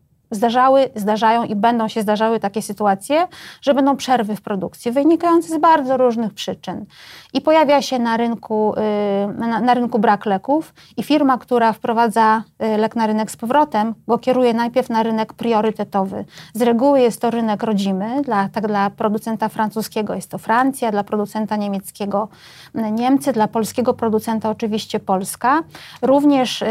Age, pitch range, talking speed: 30-49, 215-245 Hz, 145 wpm